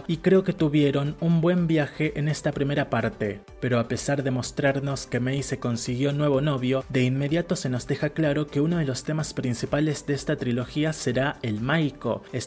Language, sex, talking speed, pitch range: Spanish, male, 195 wpm, 125-150 Hz